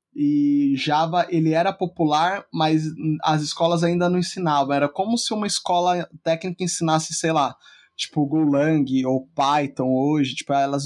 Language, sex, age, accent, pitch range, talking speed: Portuguese, male, 20-39, Brazilian, 140-165 Hz, 150 wpm